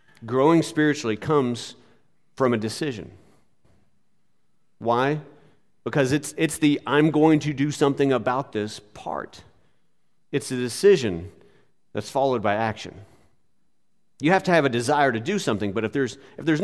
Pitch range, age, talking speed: 115-150 Hz, 40-59, 140 wpm